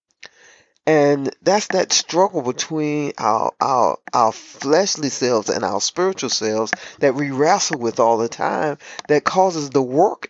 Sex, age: male, 40-59